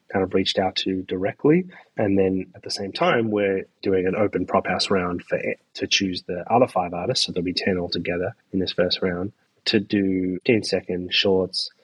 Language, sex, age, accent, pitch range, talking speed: English, male, 20-39, Australian, 95-110 Hz, 210 wpm